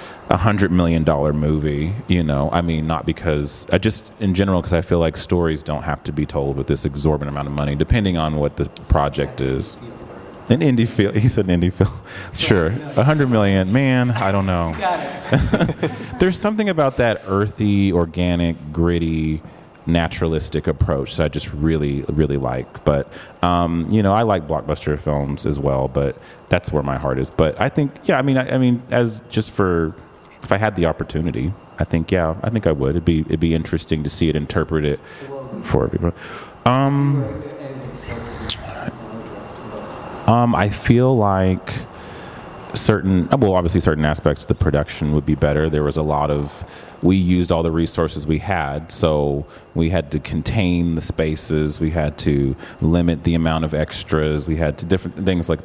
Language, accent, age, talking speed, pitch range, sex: English, American, 30-49, 180 wpm, 75-105 Hz, male